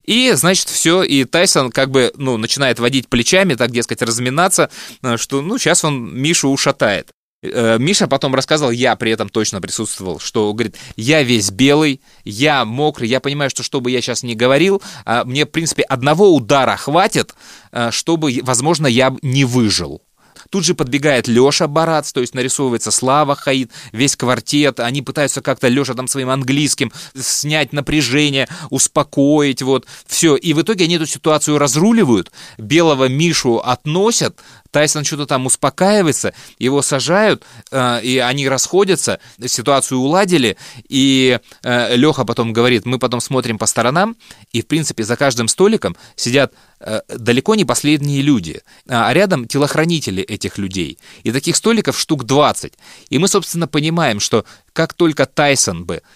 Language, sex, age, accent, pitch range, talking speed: Russian, male, 20-39, native, 125-160 Hz, 150 wpm